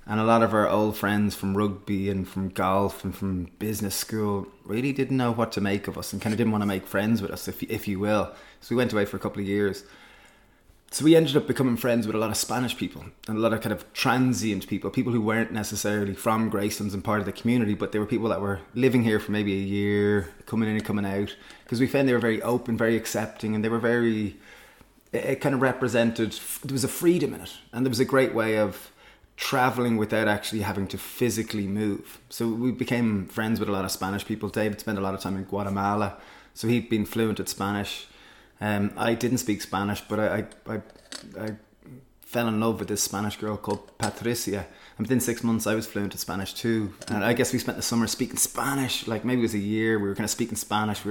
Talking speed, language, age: 245 wpm, English, 20-39